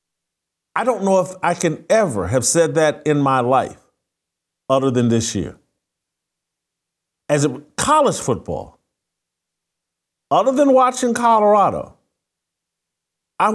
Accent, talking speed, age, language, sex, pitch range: American, 115 wpm, 50-69, English, male, 140-220 Hz